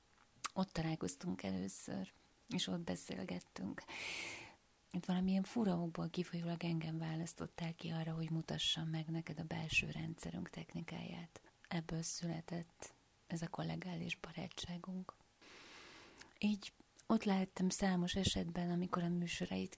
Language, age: Hungarian, 30-49